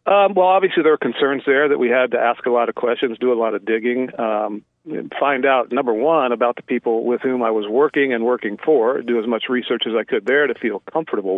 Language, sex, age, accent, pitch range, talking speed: English, male, 40-59, American, 110-125 Hz, 255 wpm